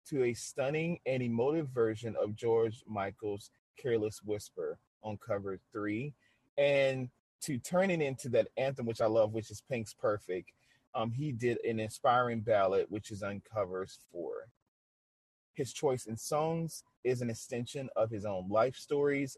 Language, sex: English, male